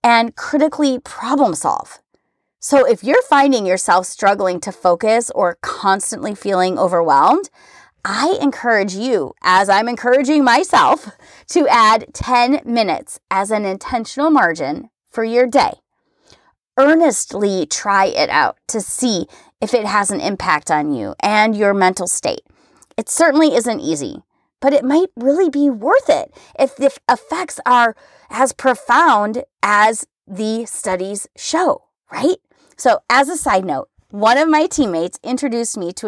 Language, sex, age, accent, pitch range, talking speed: English, female, 30-49, American, 200-275 Hz, 140 wpm